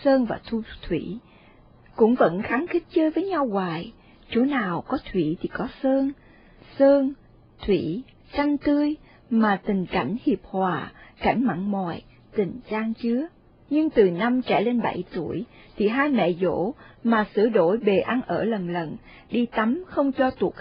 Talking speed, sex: 170 wpm, female